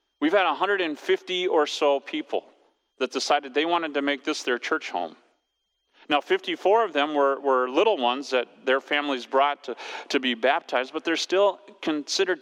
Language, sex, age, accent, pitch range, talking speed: English, male, 40-59, American, 125-195 Hz, 175 wpm